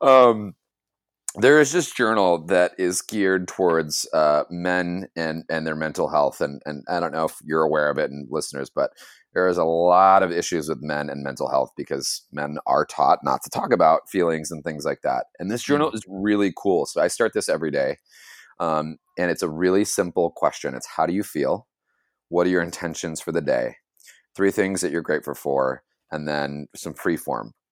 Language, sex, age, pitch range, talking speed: English, male, 30-49, 75-105 Hz, 205 wpm